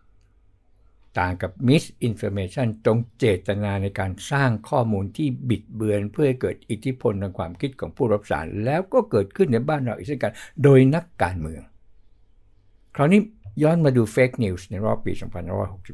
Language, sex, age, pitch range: Thai, male, 60-79, 95-115 Hz